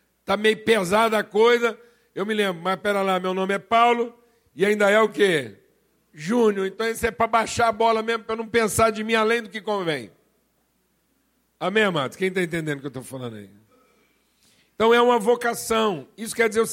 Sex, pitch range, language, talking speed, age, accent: male, 180-235 Hz, Portuguese, 205 wpm, 60-79, Brazilian